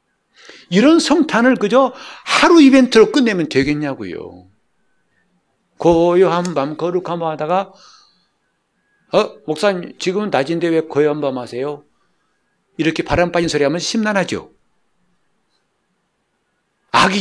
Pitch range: 125-195 Hz